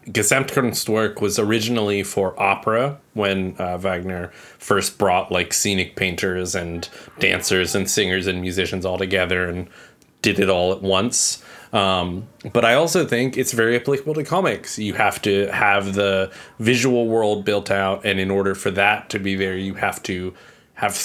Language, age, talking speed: English, 20-39, 165 wpm